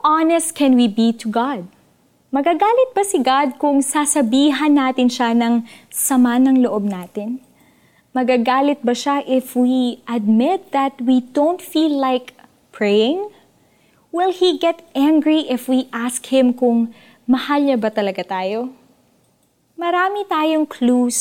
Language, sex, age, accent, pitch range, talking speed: Filipino, female, 20-39, native, 225-285 Hz, 135 wpm